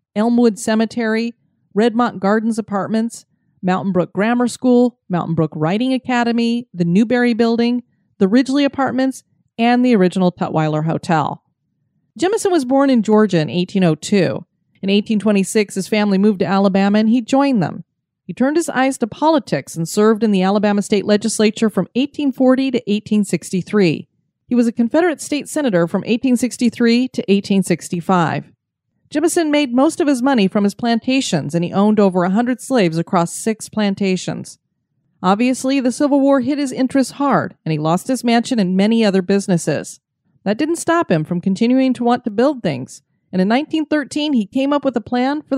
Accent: American